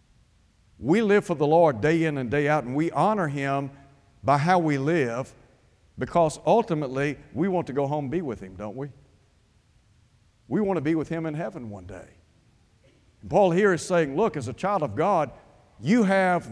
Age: 60-79